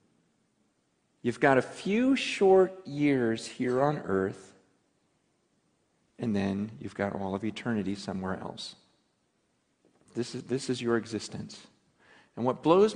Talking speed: 125 wpm